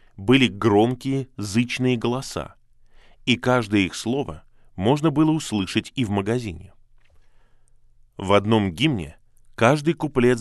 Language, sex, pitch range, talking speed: Russian, male, 100-130 Hz, 110 wpm